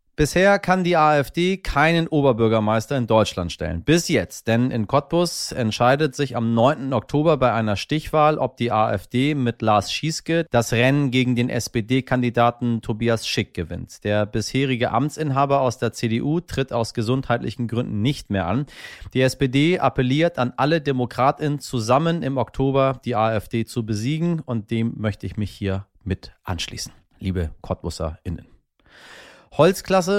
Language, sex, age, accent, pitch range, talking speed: German, male, 30-49, German, 115-145 Hz, 145 wpm